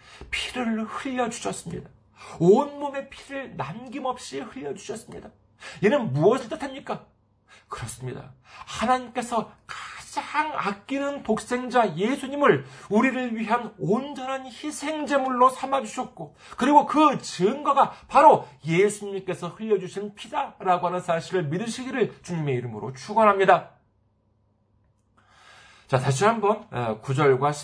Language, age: Korean, 40-59